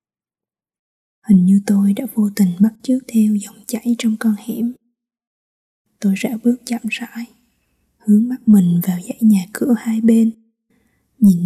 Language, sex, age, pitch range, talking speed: Vietnamese, female, 20-39, 200-225 Hz, 150 wpm